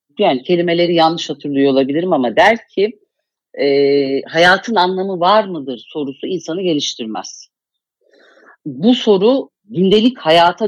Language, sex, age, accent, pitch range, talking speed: Turkish, female, 50-69, native, 140-205 Hz, 105 wpm